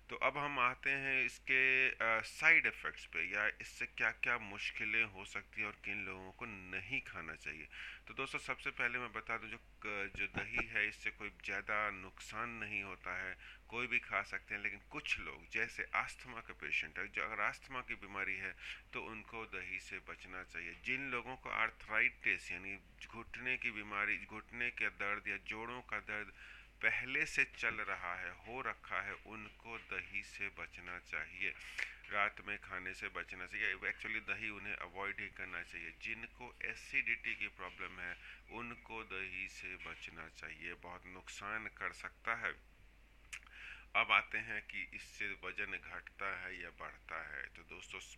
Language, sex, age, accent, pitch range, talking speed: English, male, 30-49, Indian, 95-120 Hz, 165 wpm